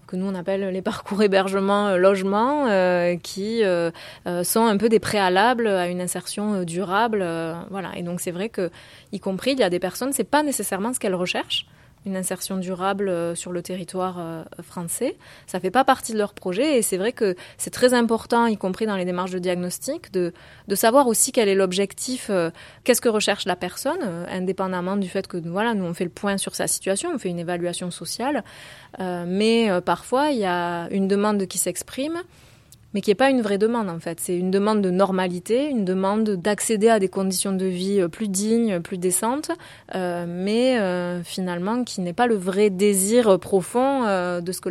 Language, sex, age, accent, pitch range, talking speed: French, female, 20-39, French, 180-220 Hz, 195 wpm